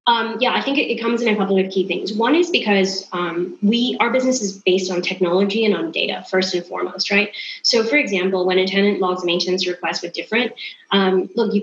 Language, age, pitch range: English, 20-39, 185-215 Hz